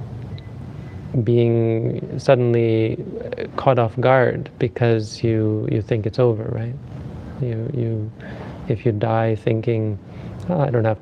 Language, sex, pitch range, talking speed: English, male, 110-130 Hz, 120 wpm